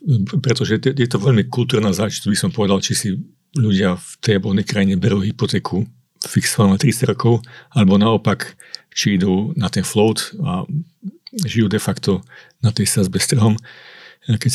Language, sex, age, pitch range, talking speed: Slovak, male, 50-69, 105-130 Hz, 160 wpm